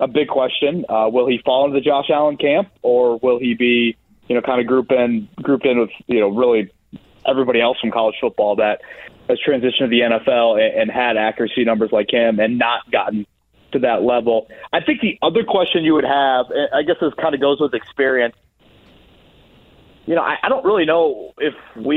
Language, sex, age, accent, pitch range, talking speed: English, male, 30-49, American, 115-145 Hz, 210 wpm